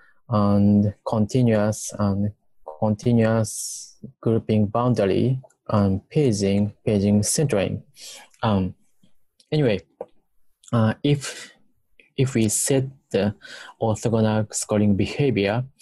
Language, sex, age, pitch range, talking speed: English, male, 20-39, 105-120 Hz, 80 wpm